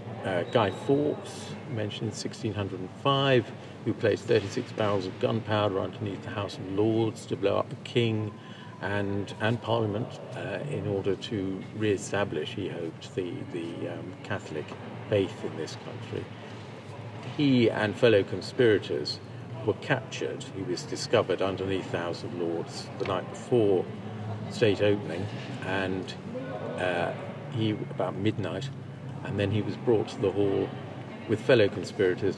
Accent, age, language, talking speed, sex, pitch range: British, 50-69, English, 140 wpm, male, 100-125 Hz